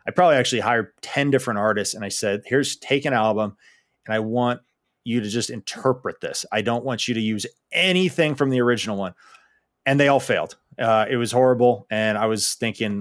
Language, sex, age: English, male, 30-49